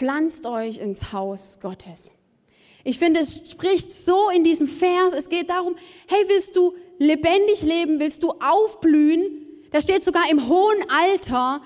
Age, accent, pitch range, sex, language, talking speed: 20-39, German, 285-375 Hz, female, German, 155 wpm